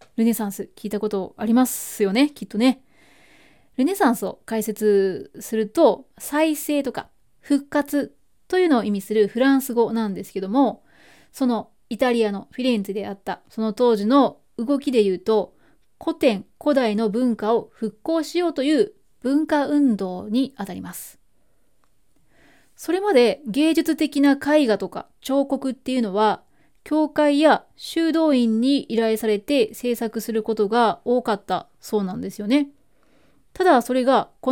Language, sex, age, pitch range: Japanese, female, 20-39, 215-285 Hz